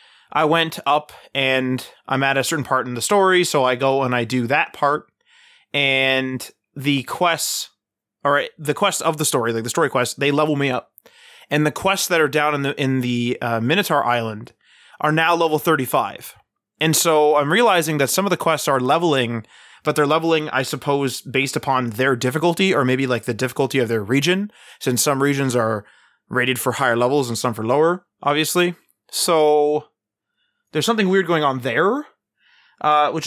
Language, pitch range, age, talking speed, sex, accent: English, 125-165 Hz, 20-39, 185 wpm, male, American